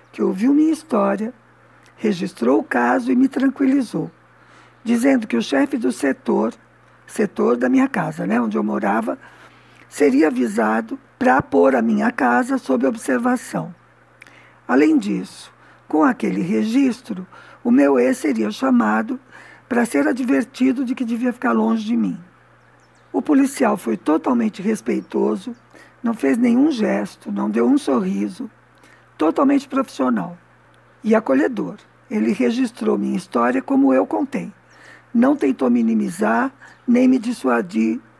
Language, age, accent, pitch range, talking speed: Portuguese, 50-69, Brazilian, 190-265 Hz, 130 wpm